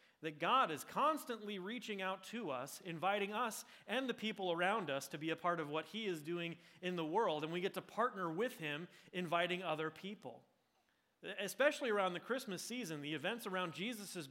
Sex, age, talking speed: male, 30-49, 195 wpm